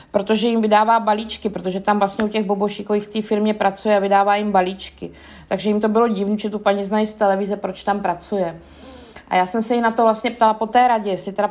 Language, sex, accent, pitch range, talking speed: Czech, female, native, 190-215 Hz, 240 wpm